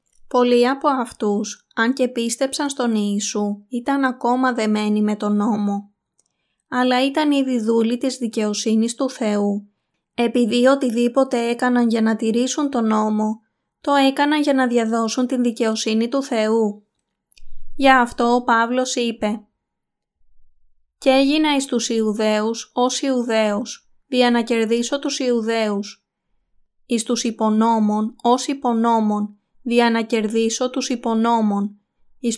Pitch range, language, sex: 220-255 Hz, Greek, female